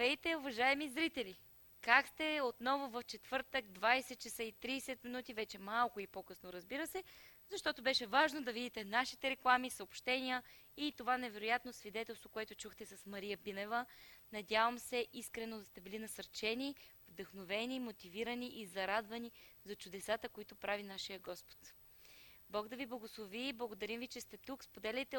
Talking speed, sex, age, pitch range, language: 150 wpm, female, 20-39, 215-265 Hz, Bulgarian